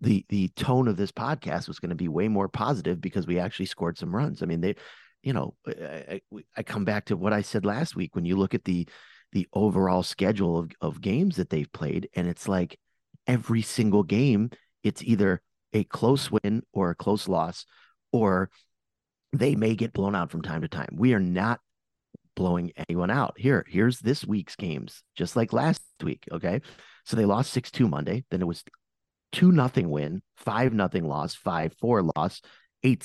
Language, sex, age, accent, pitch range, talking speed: English, male, 30-49, American, 90-125 Hz, 195 wpm